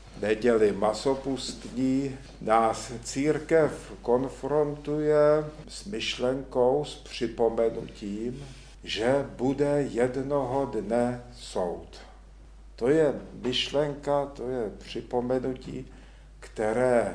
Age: 50-69